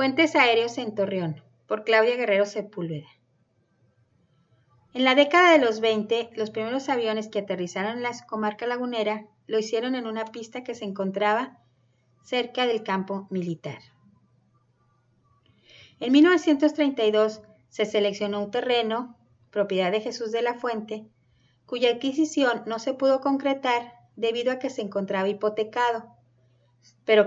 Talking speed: 130 wpm